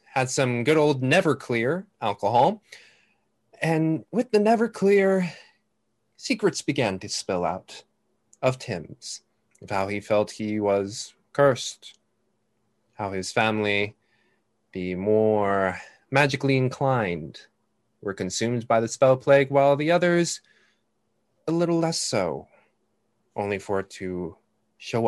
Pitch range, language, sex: 100-155 Hz, English, male